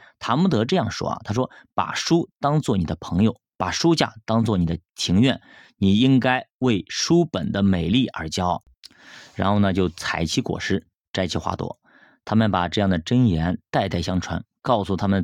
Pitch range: 90-115 Hz